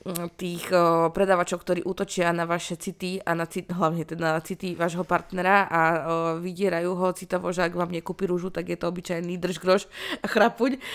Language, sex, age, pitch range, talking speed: Slovak, female, 20-39, 170-195 Hz, 180 wpm